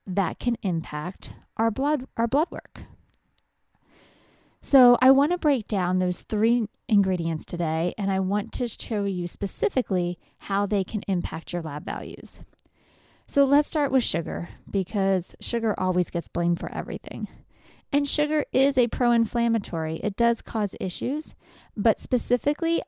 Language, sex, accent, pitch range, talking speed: English, female, American, 185-245 Hz, 140 wpm